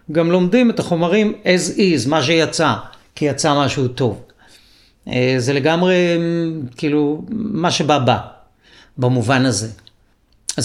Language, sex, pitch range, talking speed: Hebrew, male, 125-160 Hz, 115 wpm